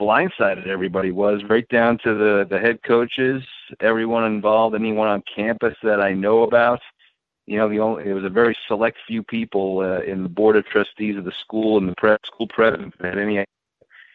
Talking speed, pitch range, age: 205 wpm, 95-110 Hz, 50-69